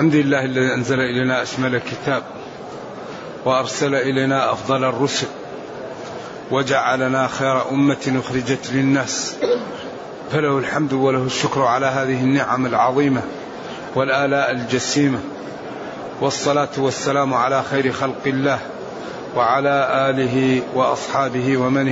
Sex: male